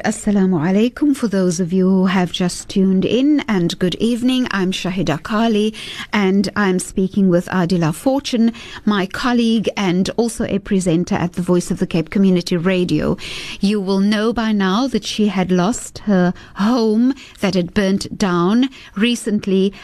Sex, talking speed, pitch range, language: female, 160 wpm, 190-245 Hz, English